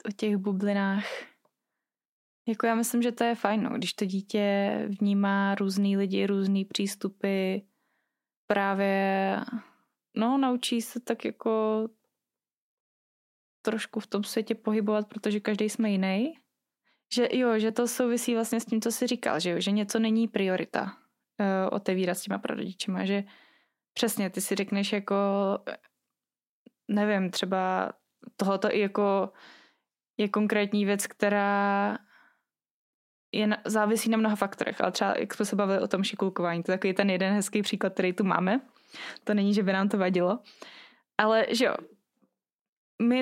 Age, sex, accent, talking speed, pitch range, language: 20-39, female, native, 145 wpm, 200-225 Hz, Czech